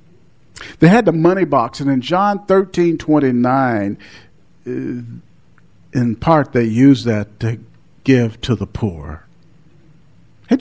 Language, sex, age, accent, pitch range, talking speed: English, male, 50-69, American, 110-150 Hz, 115 wpm